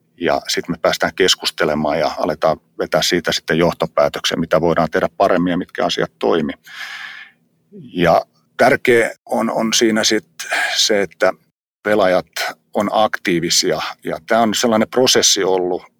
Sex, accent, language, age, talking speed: male, native, Finnish, 50-69, 135 wpm